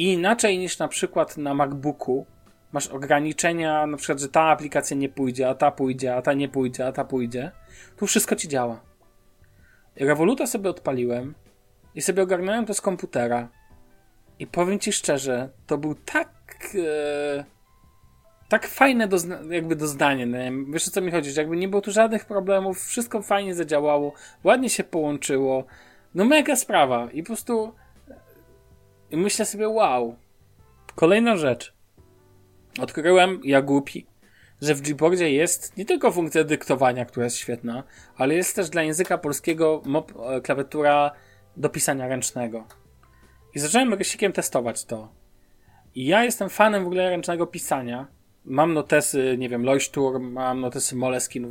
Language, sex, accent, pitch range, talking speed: Polish, male, native, 125-180 Hz, 150 wpm